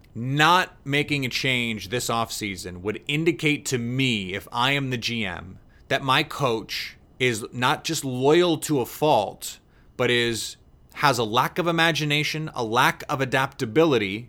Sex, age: male, 30-49